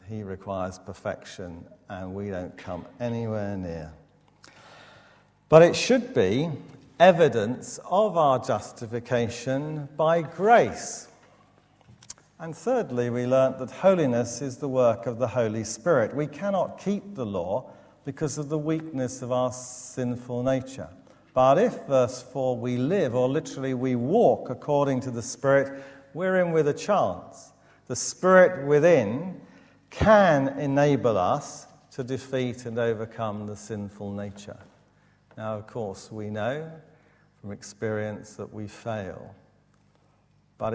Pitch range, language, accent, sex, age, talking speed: 105-145 Hz, English, British, male, 50-69, 130 wpm